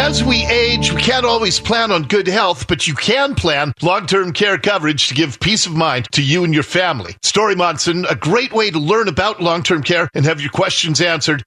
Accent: American